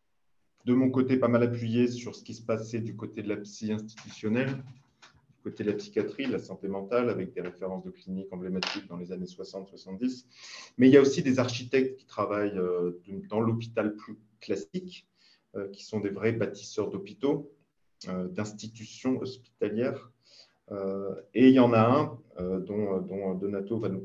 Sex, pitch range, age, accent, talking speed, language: male, 105-125 Hz, 30-49, French, 165 wpm, French